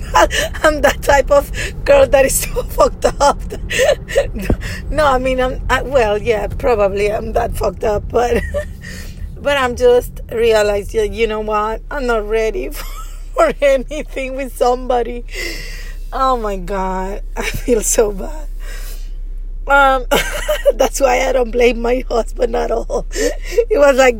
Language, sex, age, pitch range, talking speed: English, female, 20-39, 240-290 Hz, 145 wpm